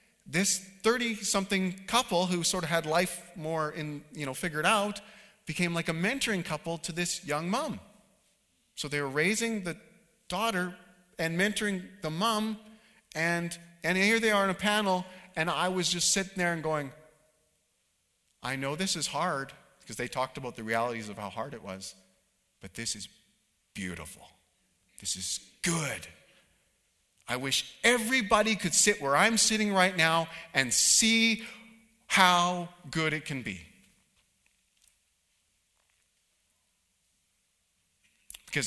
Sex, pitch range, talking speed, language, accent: male, 125-205 Hz, 140 wpm, English, American